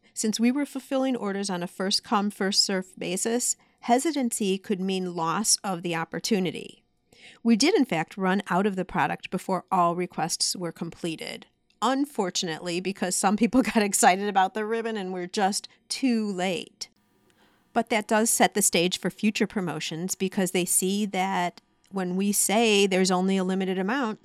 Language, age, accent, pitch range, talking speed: English, 40-59, American, 180-220 Hz, 165 wpm